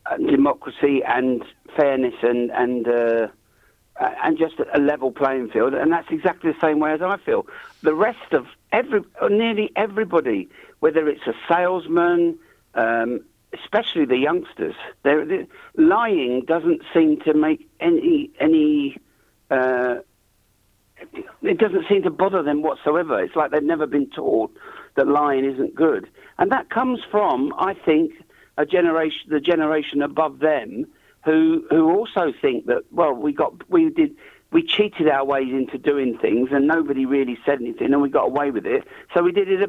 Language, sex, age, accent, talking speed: English, male, 50-69, British, 160 wpm